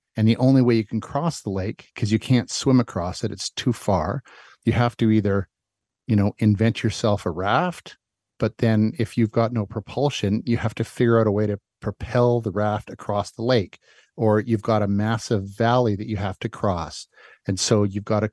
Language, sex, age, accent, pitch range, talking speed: English, male, 50-69, American, 105-125 Hz, 215 wpm